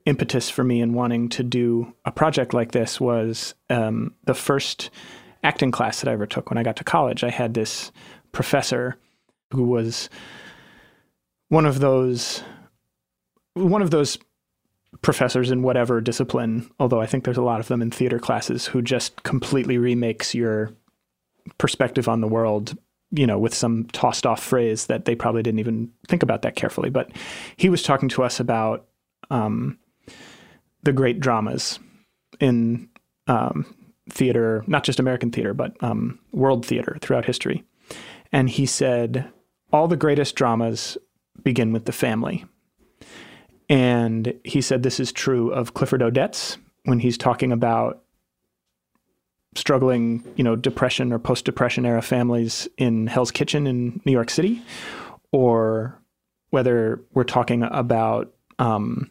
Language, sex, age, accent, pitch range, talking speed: English, male, 30-49, American, 115-130 Hz, 150 wpm